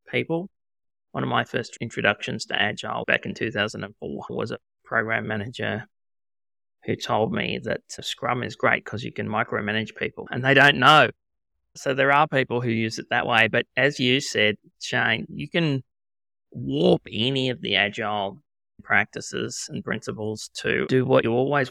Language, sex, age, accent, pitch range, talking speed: English, male, 20-39, Australian, 100-125 Hz, 165 wpm